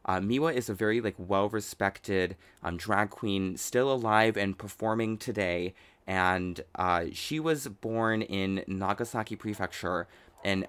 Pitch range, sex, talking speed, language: 95-110 Hz, male, 135 wpm, English